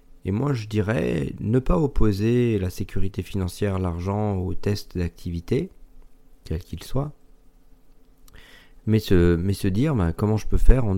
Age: 40-59